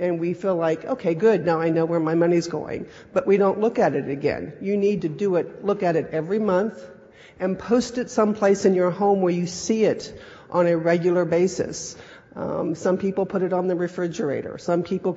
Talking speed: 220 wpm